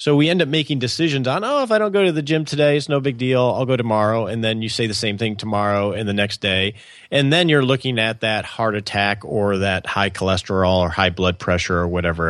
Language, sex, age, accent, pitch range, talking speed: English, male, 40-59, American, 105-150 Hz, 260 wpm